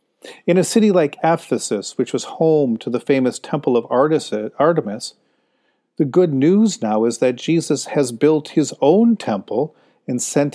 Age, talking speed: 40-59, 160 wpm